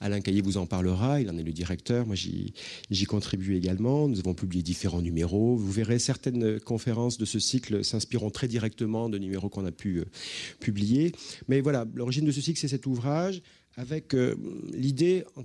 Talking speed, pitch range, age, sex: 190 wpm, 100-125 Hz, 40-59, male